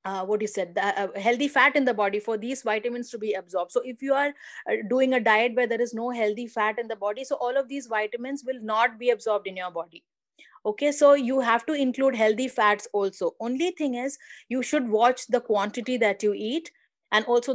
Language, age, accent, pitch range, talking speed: English, 30-49, Indian, 210-255 Hz, 230 wpm